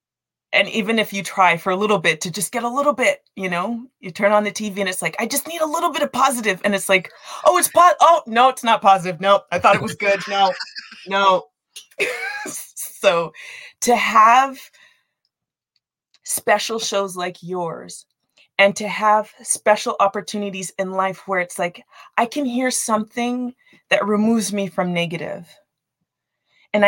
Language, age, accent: English, 20-39, American